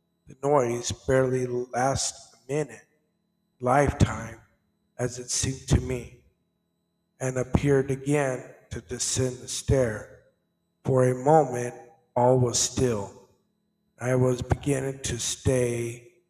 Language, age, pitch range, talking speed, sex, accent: English, 50-69, 125-145 Hz, 110 wpm, male, American